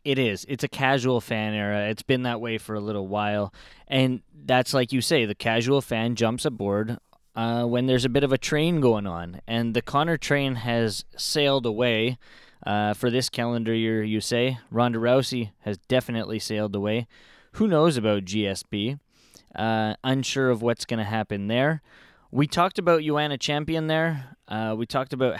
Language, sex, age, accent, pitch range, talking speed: English, male, 10-29, American, 115-135 Hz, 180 wpm